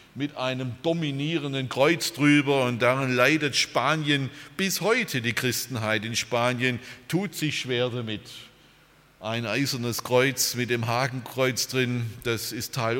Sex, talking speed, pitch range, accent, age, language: male, 135 wpm, 115-145 Hz, German, 50-69, German